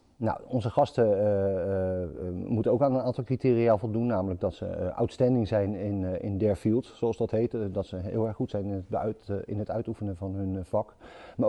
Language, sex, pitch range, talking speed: Dutch, male, 95-115 Hz, 190 wpm